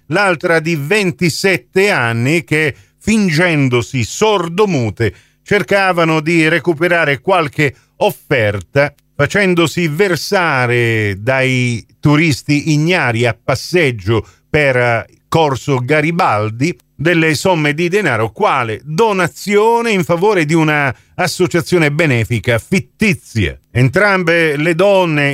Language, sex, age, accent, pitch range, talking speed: Italian, male, 40-59, native, 120-165 Hz, 90 wpm